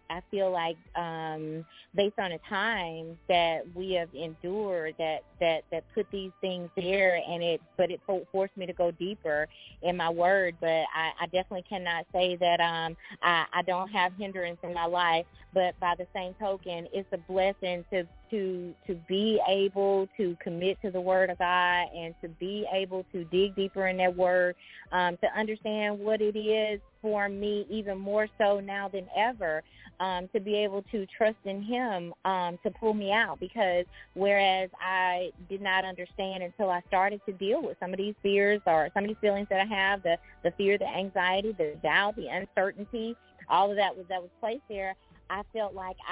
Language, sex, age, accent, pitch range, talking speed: English, female, 30-49, American, 175-200 Hz, 195 wpm